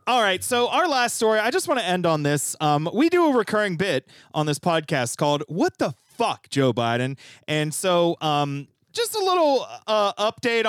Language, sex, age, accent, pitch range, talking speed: English, male, 30-49, American, 140-205 Hz, 200 wpm